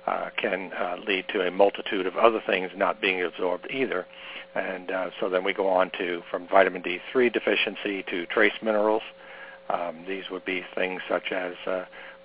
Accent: American